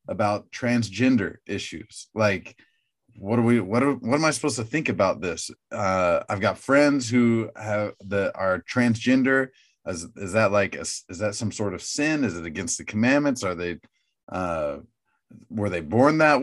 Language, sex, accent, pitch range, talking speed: English, male, American, 105-130 Hz, 180 wpm